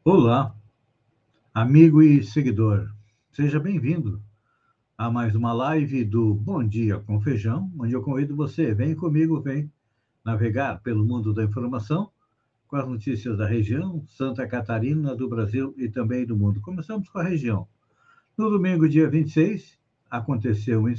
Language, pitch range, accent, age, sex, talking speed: Portuguese, 115-150 Hz, Brazilian, 60-79, male, 145 wpm